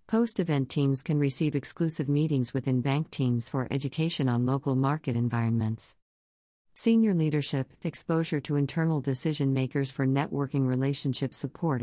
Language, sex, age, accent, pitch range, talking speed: English, female, 50-69, American, 130-155 Hz, 130 wpm